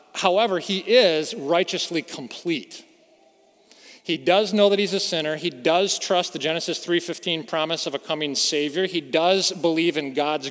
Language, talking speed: English, 160 wpm